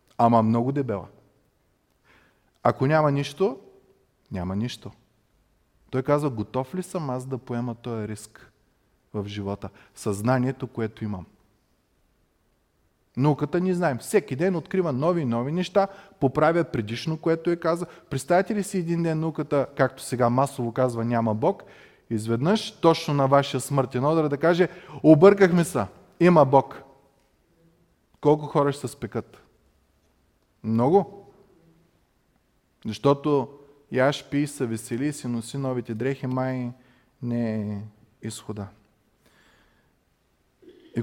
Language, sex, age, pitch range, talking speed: Bulgarian, male, 30-49, 120-155 Hz, 120 wpm